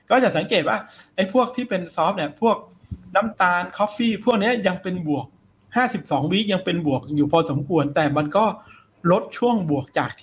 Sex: male